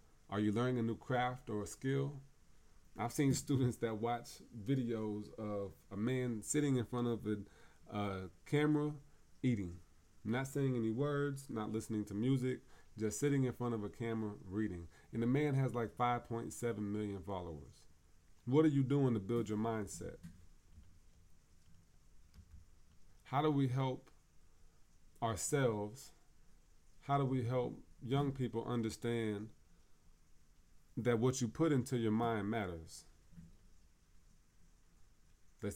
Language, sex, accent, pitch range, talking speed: English, male, American, 85-125 Hz, 135 wpm